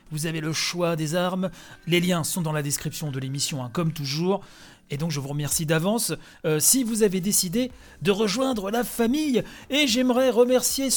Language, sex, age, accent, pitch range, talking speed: French, male, 40-59, French, 180-255 Hz, 190 wpm